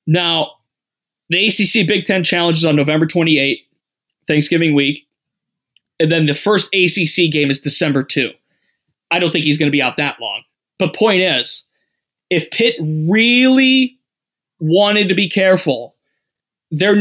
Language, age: English, 20-39